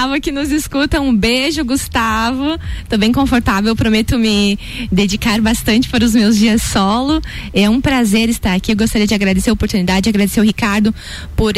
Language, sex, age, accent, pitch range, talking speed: Portuguese, female, 20-39, Brazilian, 190-225 Hz, 175 wpm